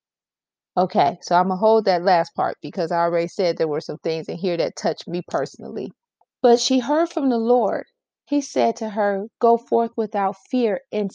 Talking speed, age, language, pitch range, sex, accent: 205 wpm, 30-49, English, 195-240 Hz, female, American